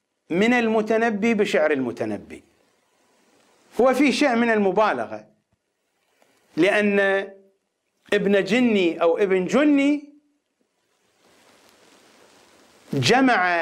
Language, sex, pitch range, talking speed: English, male, 185-235 Hz, 70 wpm